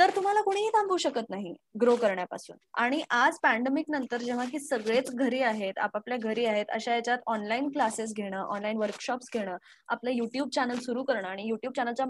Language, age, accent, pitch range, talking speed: Marathi, 20-39, native, 235-290 Hz, 180 wpm